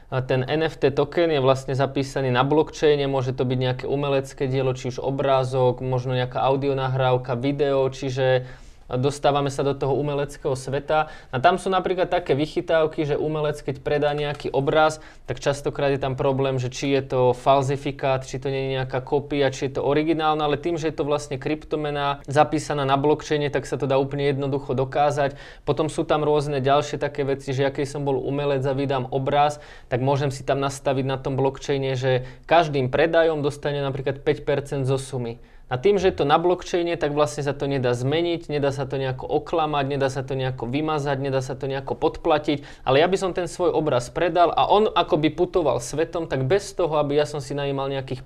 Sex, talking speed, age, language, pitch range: male, 200 wpm, 20-39, Slovak, 135-150 Hz